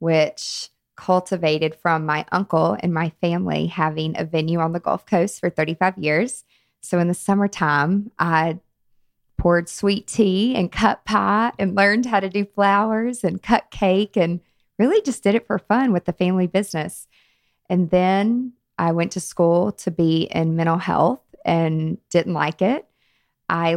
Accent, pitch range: American, 170-205 Hz